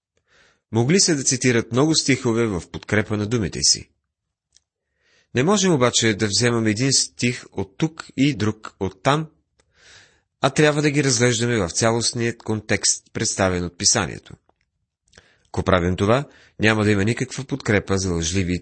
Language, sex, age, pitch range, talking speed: Bulgarian, male, 30-49, 100-140 Hz, 145 wpm